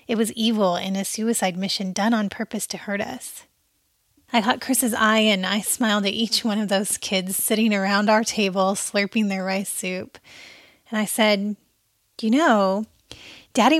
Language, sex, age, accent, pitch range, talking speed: English, female, 30-49, American, 205-240 Hz, 175 wpm